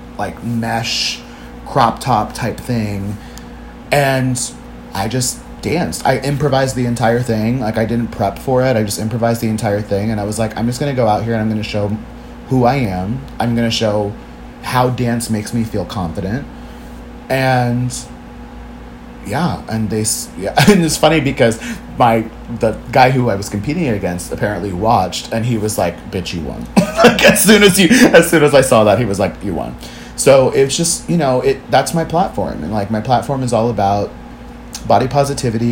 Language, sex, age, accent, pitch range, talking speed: English, male, 30-49, American, 90-120 Hz, 190 wpm